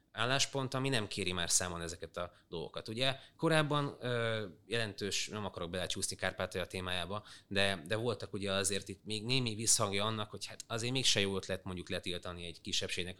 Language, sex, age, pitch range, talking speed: Hungarian, male, 30-49, 90-115 Hz, 175 wpm